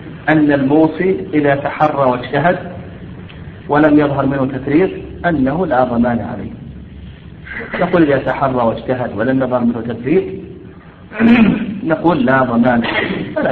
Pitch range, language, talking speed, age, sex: 125-160 Hz, Arabic, 115 wpm, 50-69, male